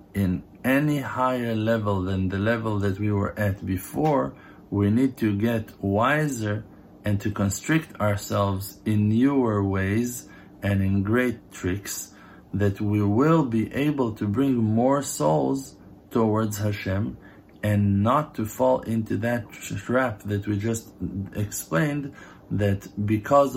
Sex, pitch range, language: male, 100-115 Hz, English